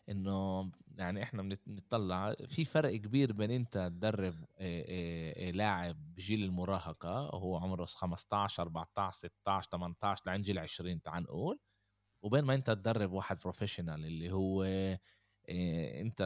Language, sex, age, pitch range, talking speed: Arabic, male, 20-39, 95-105 Hz, 120 wpm